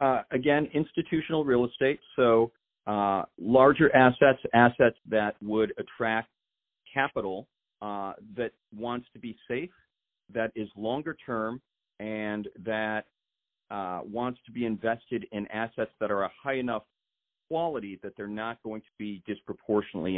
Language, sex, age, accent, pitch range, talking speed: English, male, 40-59, American, 100-120 Hz, 135 wpm